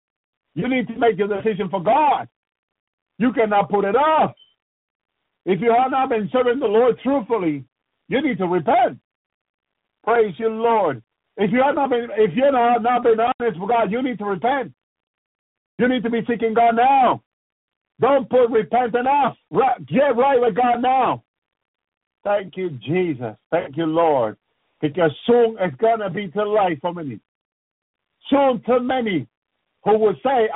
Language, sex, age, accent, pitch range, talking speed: English, male, 50-69, American, 200-245 Hz, 165 wpm